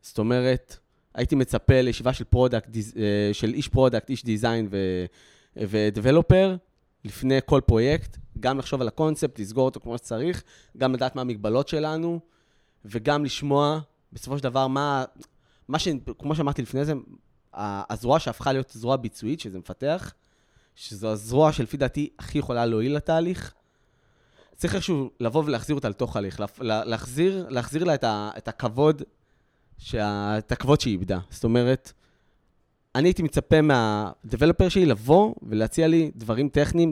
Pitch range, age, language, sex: 115-155 Hz, 20-39, Hebrew, male